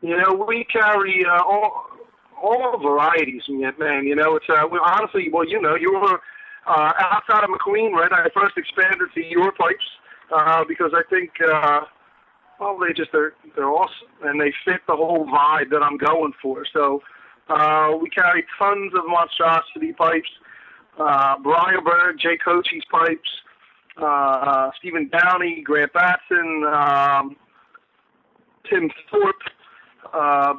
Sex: male